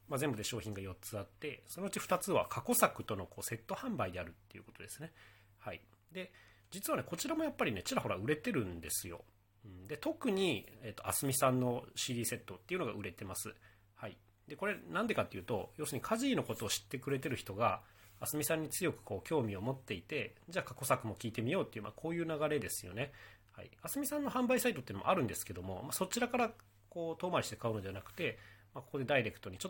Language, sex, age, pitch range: Japanese, male, 40-59, 100-145 Hz